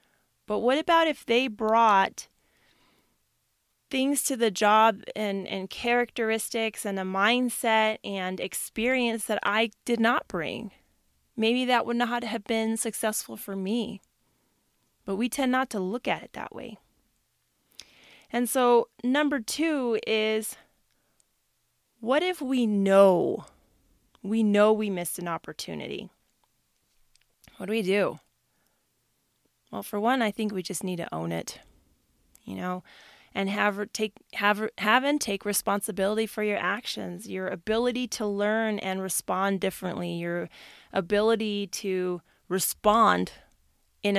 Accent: American